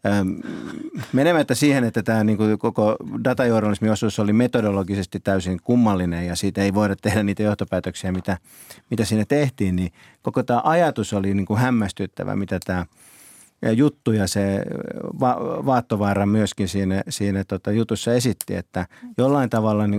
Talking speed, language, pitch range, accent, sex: 130 wpm, Finnish, 95-115 Hz, native, male